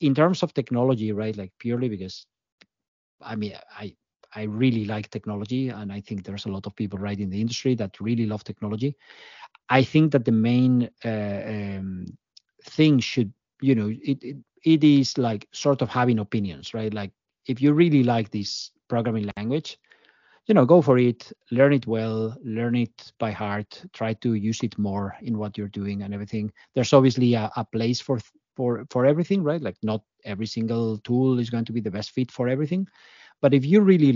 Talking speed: 195 wpm